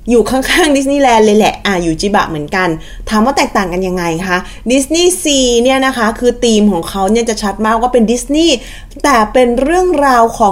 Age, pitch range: 20-39, 205-260 Hz